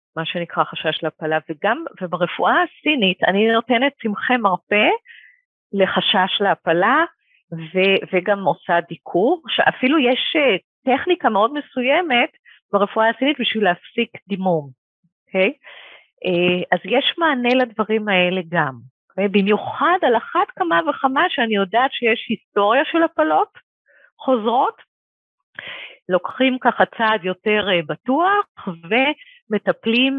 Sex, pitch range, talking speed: female, 180-265 Hz, 105 wpm